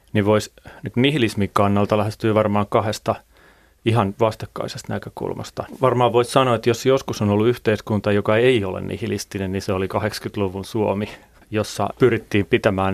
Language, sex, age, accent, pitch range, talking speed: Finnish, male, 30-49, native, 100-115 Hz, 140 wpm